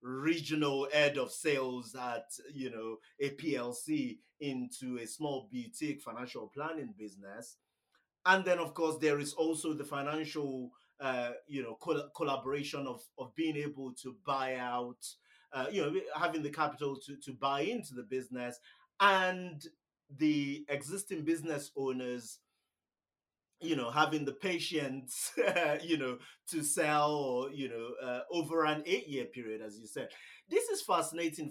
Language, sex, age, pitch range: English, male, 30-49, 130-160 Hz